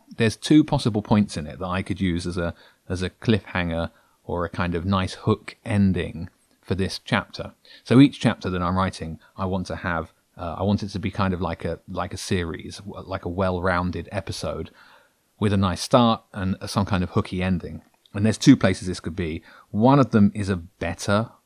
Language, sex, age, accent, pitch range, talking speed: English, male, 30-49, British, 90-105 Hz, 210 wpm